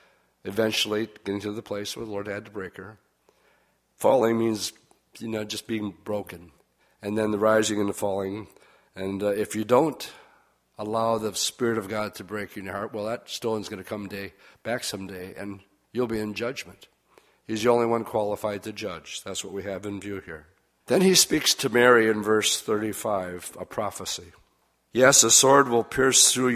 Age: 50-69